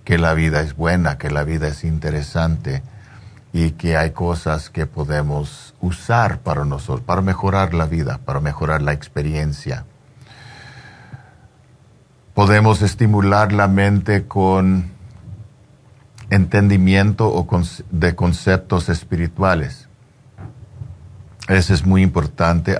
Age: 50-69